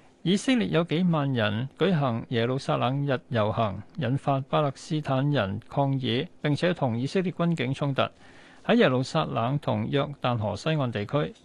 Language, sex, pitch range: Chinese, male, 120-155 Hz